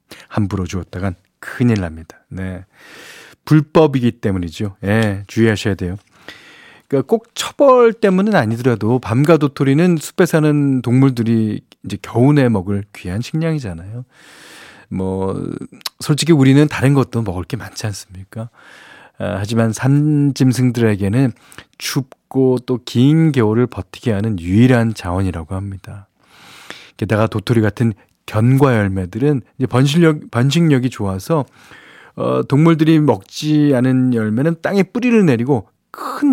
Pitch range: 100-145 Hz